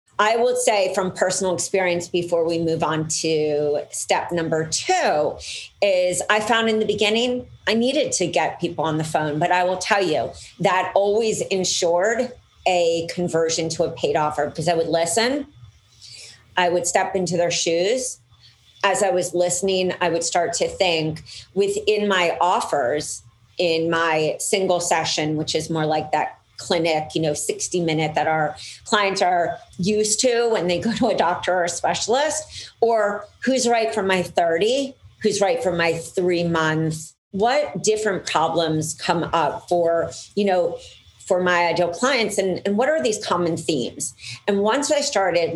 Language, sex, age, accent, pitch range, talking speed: English, female, 40-59, American, 160-210 Hz, 170 wpm